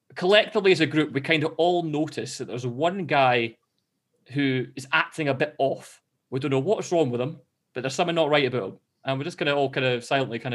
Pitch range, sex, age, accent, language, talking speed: 135-185 Hz, male, 20-39, British, English, 250 wpm